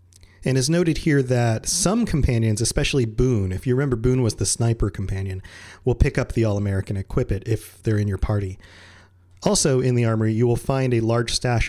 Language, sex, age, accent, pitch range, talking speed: English, male, 30-49, American, 100-135 Hz, 200 wpm